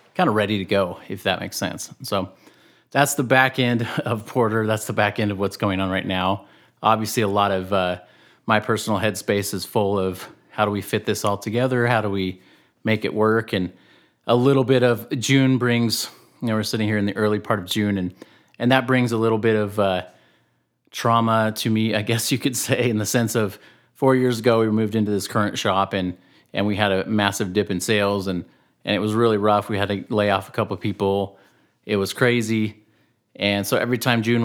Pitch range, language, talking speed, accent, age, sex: 100-115 Hz, English, 225 wpm, American, 30-49, male